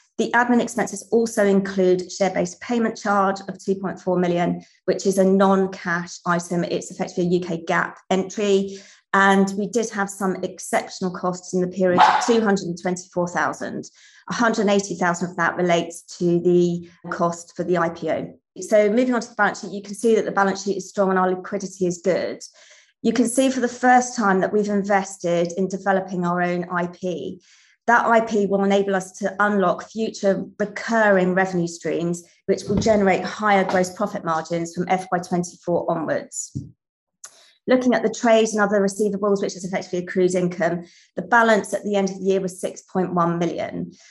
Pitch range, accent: 180-205 Hz, British